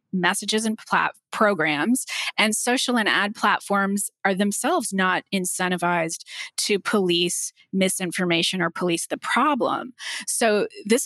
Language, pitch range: English, 185-220 Hz